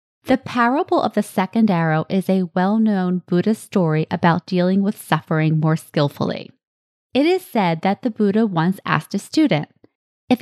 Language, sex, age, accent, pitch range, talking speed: English, female, 20-39, American, 170-220 Hz, 160 wpm